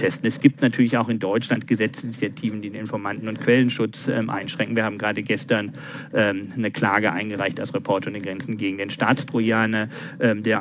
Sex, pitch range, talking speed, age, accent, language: male, 110-140 Hz, 165 wpm, 40-59, German, German